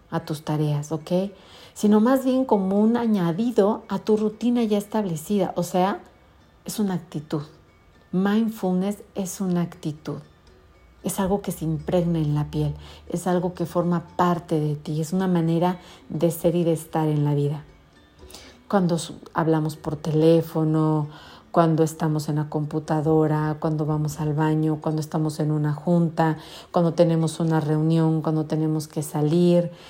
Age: 40-59